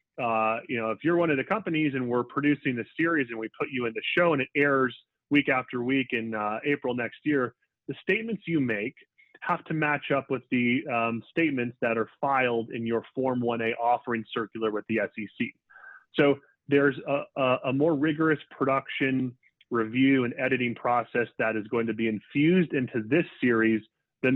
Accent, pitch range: American, 120-155 Hz